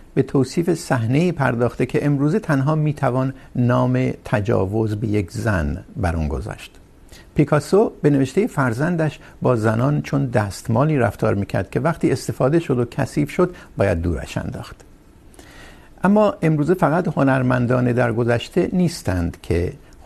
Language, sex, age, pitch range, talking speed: Urdu, male, 60-79, 95-140 Hz, 130 wpm